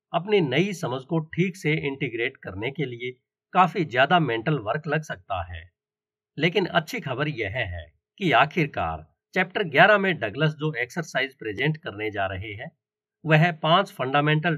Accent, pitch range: native, 110-180 Hz